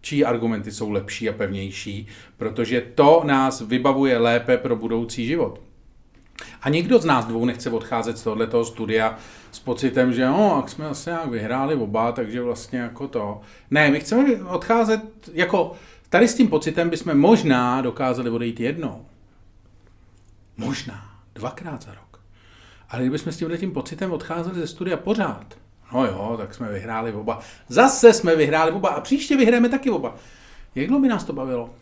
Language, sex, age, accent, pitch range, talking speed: Czech, male, 40-59, native, 115-175 Hz, 160 wpm